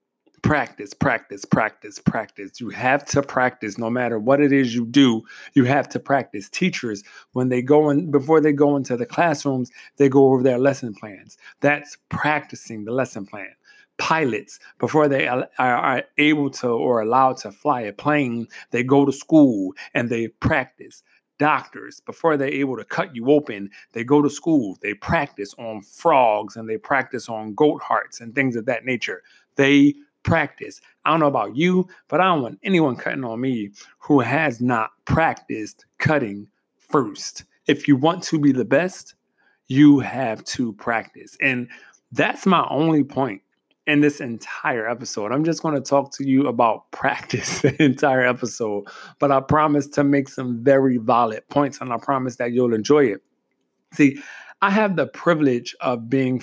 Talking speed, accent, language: 175 wpm, American, English